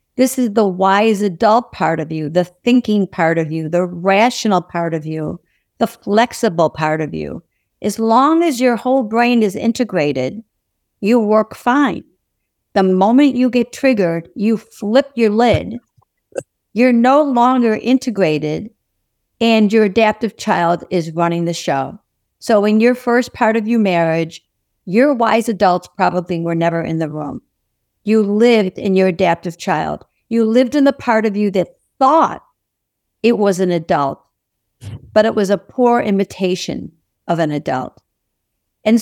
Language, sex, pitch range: English, female, 170-230 Hz